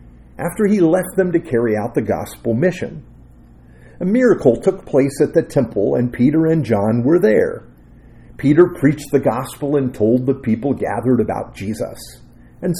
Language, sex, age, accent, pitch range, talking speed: English, male, 50-69, American, 105-165 Hz, 165 wpm